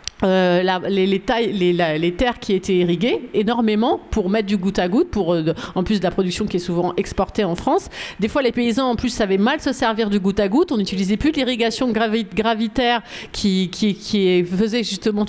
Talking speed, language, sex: 230 wpm, French, female